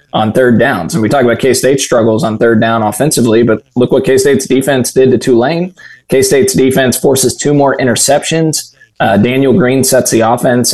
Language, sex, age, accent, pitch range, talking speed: English, male, 20-39, American, 110-130 Hz, 185 wpm